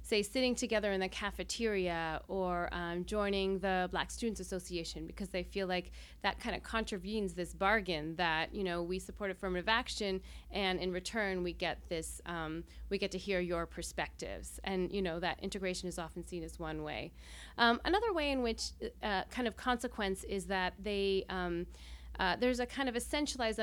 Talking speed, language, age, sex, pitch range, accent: 185 wpm, English, 30-49, female, 175-205 Hz, American